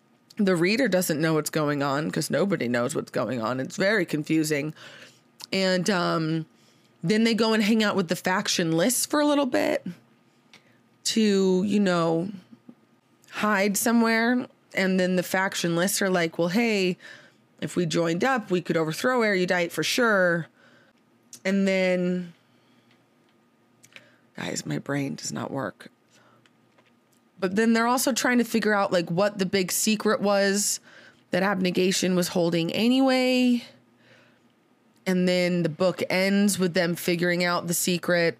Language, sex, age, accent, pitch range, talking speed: English, female, 20-39, American, 160-200 Hz, 145 wpm